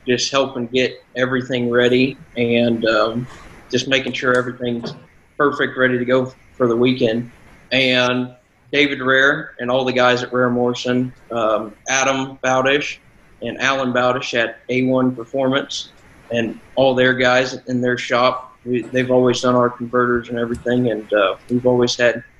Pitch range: 125-135 Hz